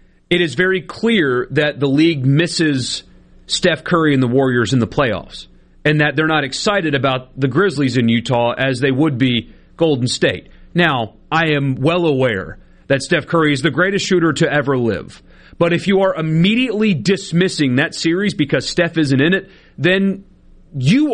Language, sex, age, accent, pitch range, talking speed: English, male, 40-59, American, 145-190 Hz, 175 wpm